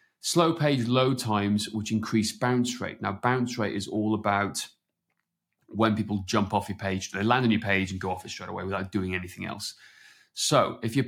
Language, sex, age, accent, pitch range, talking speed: English, male, 30-49, British, 105-125 Hz, 205 wpm